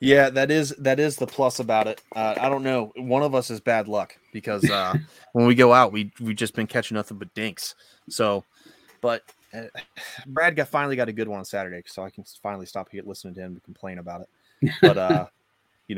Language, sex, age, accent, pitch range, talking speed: English, male, 20-39, American, 100-120 Hz, 225 wpm